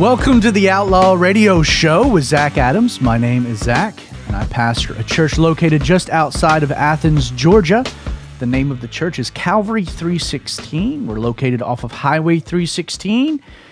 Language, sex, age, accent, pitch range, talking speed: English, male, 30-49, American, 135-195 Hz, 165 wpm